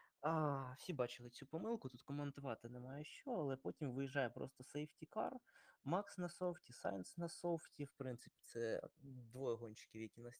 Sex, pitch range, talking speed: male, 115-155 Hz, 155 wpm